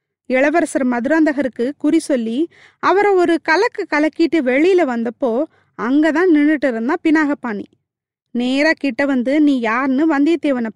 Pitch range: 250-330 Hz